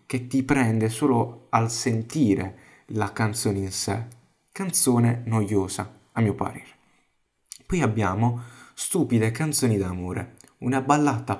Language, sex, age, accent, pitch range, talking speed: Italian, male, 20-39, native, 105-140 Hz, 115 wpm